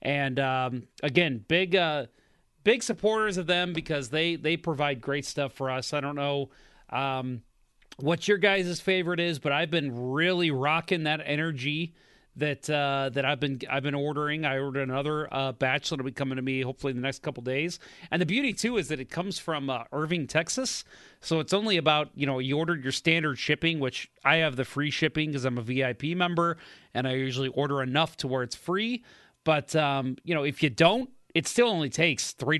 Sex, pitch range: male, 135-165 Hz